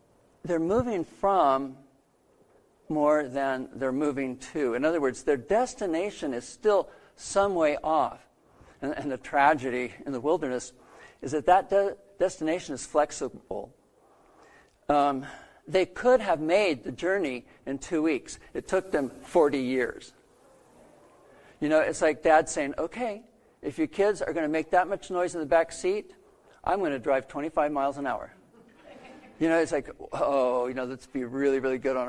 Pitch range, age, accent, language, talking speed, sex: 130-180 Hz, 50-69, American, English, 165 wpm, male